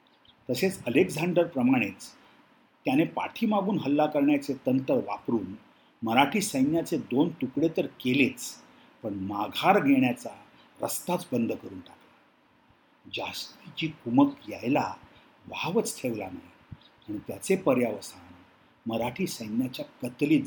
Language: Marathi